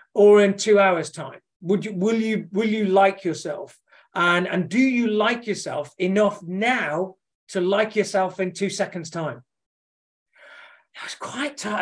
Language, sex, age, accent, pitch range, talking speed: English, male, 40-59, British, 160-210 Hz, 160 wpm